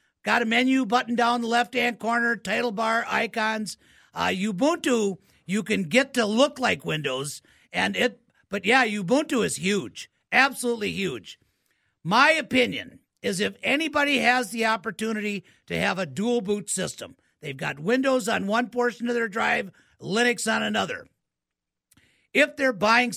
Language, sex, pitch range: English, male, 200-245 Hz